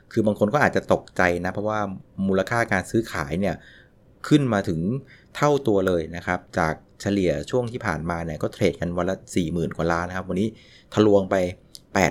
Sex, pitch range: male, 90-115 Hz